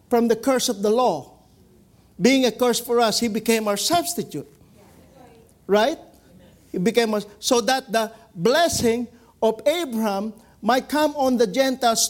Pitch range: 225-285 Hz